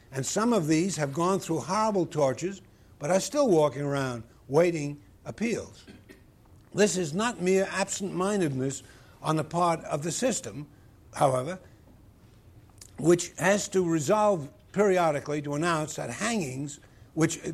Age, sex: 60-79, male